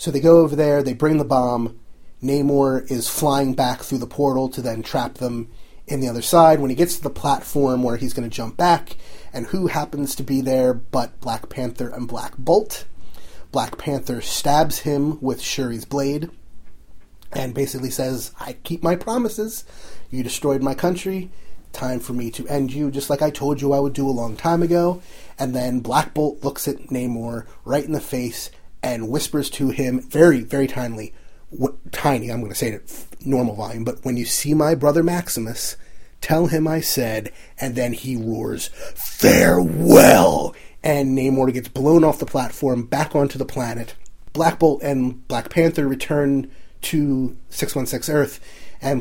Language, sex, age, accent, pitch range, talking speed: English, male, 30-49, American, 125-145 Hz, 185 wpm